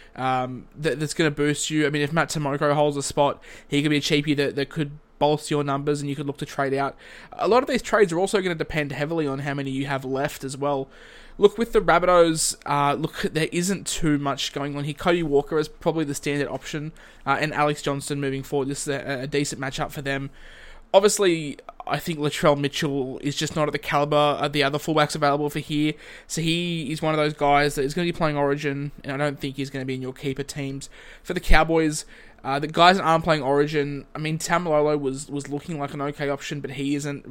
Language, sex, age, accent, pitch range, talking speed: English, male, 20-39, Australian, 140-155 Hz, 245 wpm